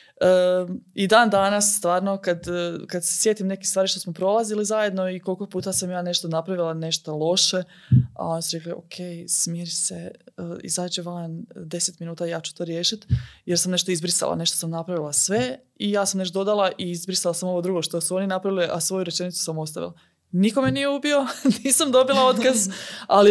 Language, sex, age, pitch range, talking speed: Croatian, female, 20-39, 170-195 Hz, 180 wpm